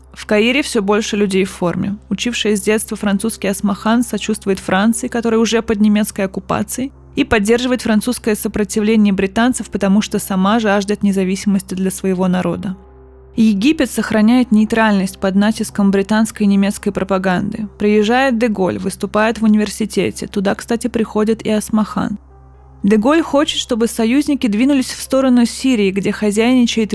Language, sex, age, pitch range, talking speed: Russian, female, 20-39, 200-235 Hz, 135 wpm